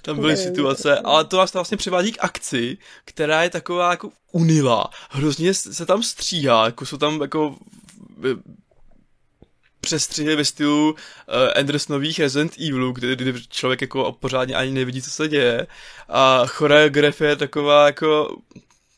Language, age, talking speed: Czech, 20-39, 140 wpm